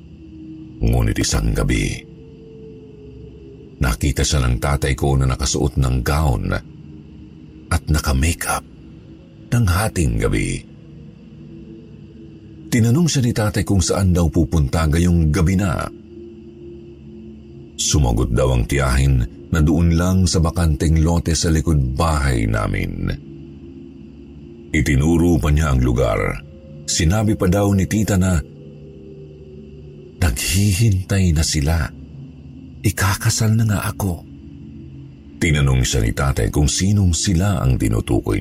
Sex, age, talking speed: male, 50-69, 105 wpm